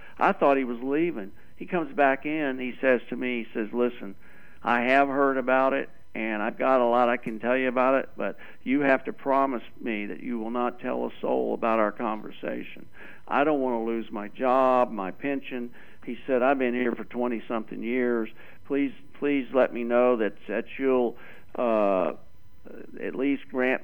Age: 50-69